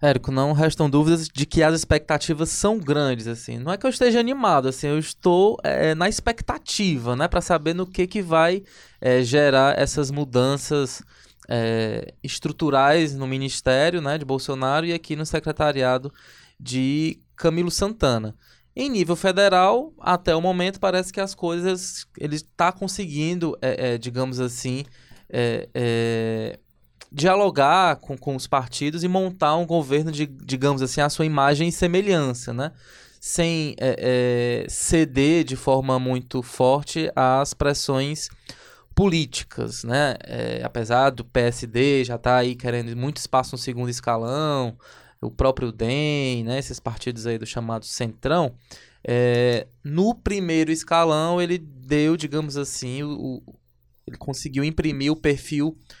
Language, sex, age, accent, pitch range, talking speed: Portuguese, male, 20-39, Brazilian, 125-165 Hz, 145 wpm